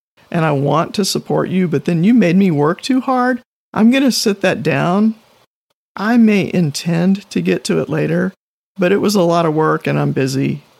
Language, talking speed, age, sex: English, 210 wpm, 50-69, male